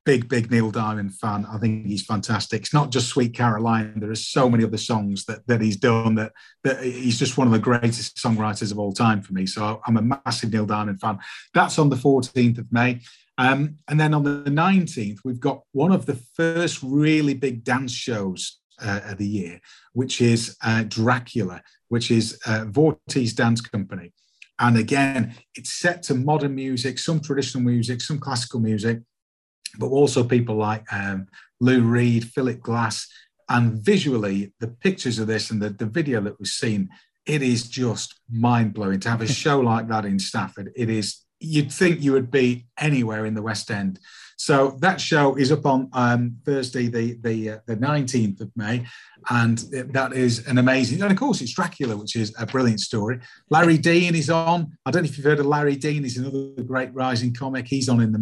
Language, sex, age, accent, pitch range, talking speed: English, male, 40-59, British, 110-140 Hz, 195 wpm